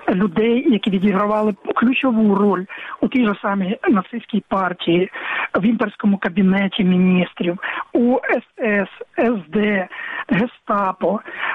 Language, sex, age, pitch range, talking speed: Ukrainian, male, 50-69, 195-235 Hz, 100 wpm